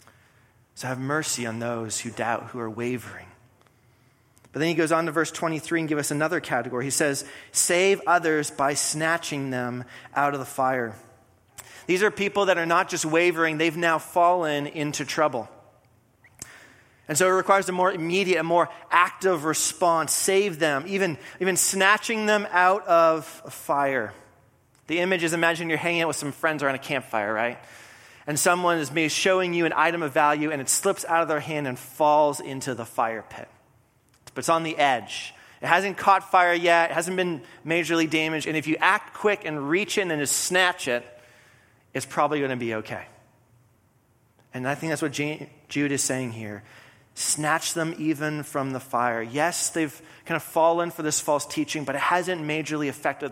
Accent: American